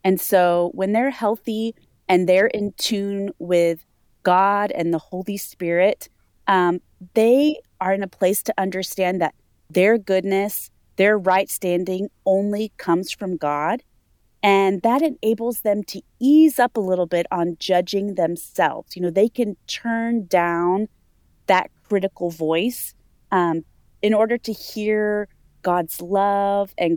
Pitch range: 180-220 Hz